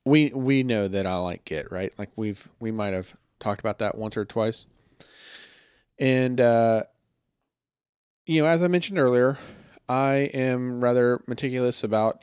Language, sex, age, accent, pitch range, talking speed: English, male, 30-49, American, 105-130 Hz, 155 wpm